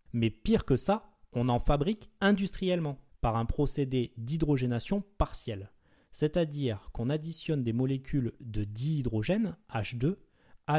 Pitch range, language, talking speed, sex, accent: 115-155 Hz, French, 120 wpm, male, French